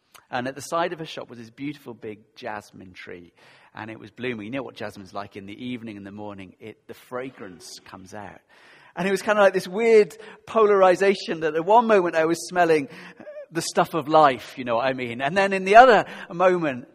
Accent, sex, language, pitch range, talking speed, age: British, male, English, 110-170 Hz, 225 wpm, 40-59